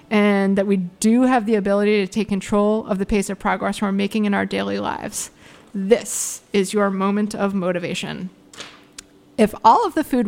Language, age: English, 30-49